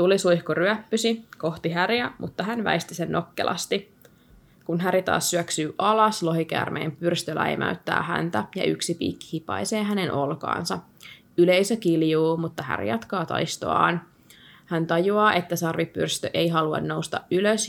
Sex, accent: female, native